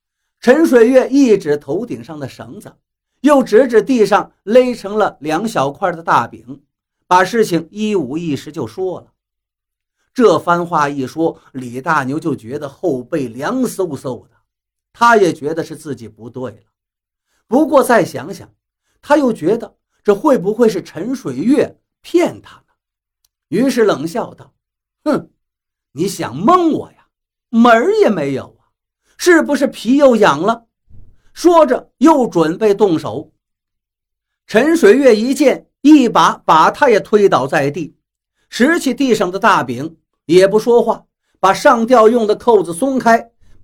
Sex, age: male, 50-69